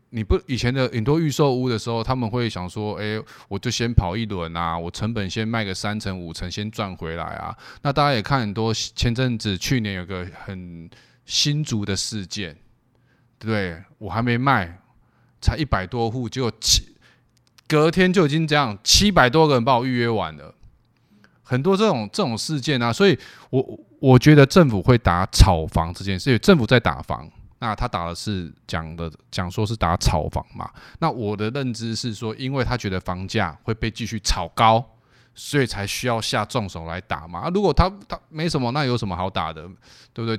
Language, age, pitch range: Chinese, 20-39, 95-130 Hz